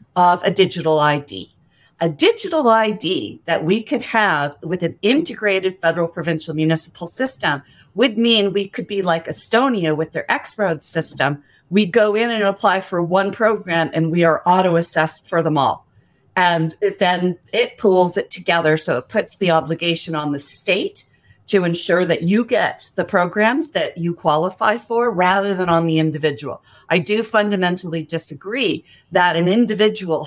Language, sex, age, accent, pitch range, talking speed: English, female, 40-59, American, 160-200 Hz, 160 wpm